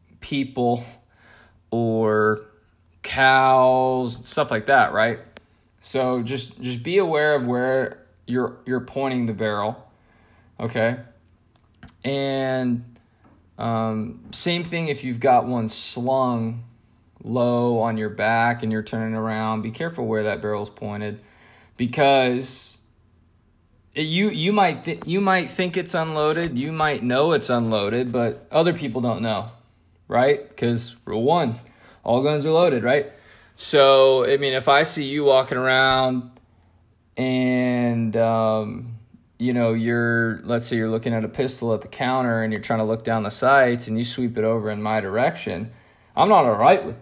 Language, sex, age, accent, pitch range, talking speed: English, male, 20-39, American, 110-130 Hz, 150 wpm